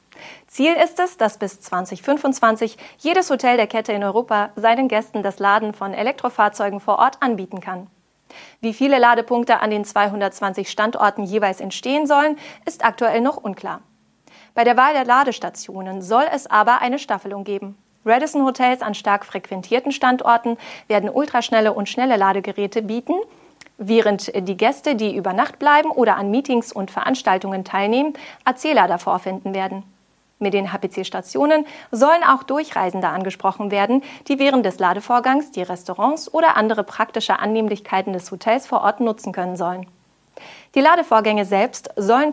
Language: German